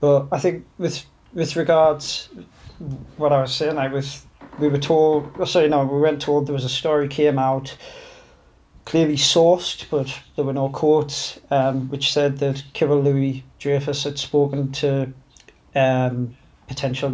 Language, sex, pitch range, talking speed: English, male, 135-150 Hz, 165 wpm